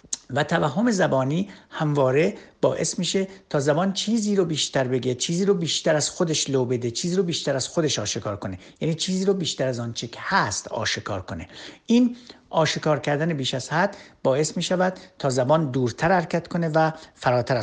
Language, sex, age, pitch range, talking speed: Persian, male, 60-79, 130-180 Hz, 175 wpm